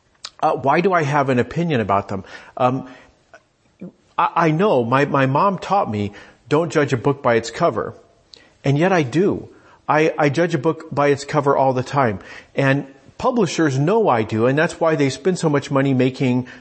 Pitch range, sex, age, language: 125-165 Hz, male, 50-69, English